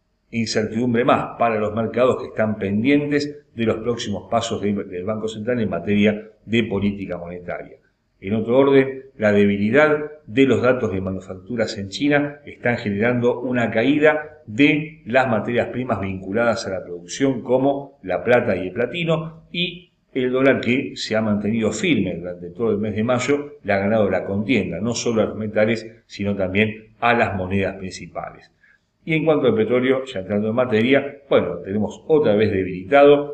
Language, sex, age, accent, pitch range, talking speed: Spanish, male, 40-59, Argentinian, 105-140 Hz, 170 wpm